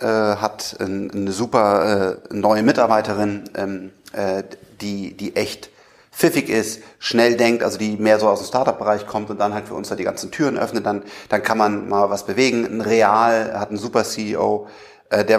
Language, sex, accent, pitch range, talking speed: German, male, German, 105-120 Hz, 170 wpm